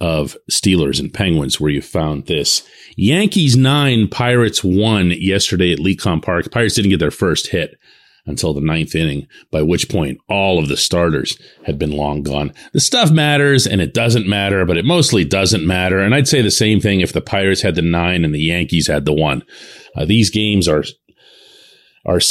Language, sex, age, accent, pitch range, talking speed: English, male, 40-59, American, 85-125 Hz, 195 wpm